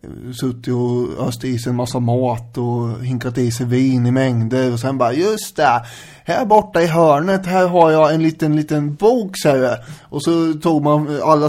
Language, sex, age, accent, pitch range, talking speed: English, male, 20-39, Swedish, 125-155 Hz, 200 wpm